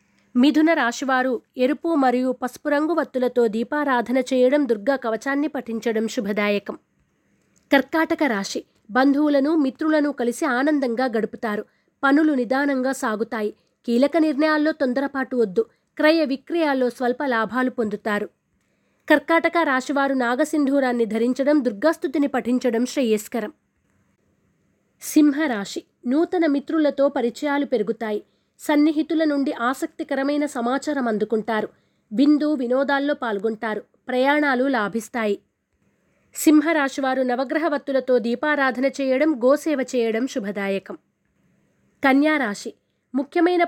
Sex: female